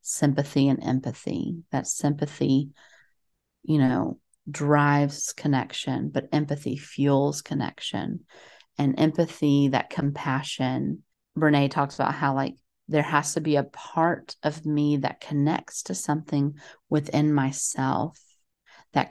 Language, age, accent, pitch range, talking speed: English, 30-49, American, 140-150 Hz, 115 wpm